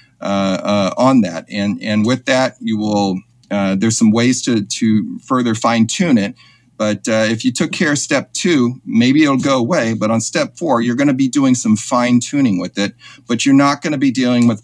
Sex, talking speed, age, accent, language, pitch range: male, 225 wpm, 40-59, American, English, 100-125 Hz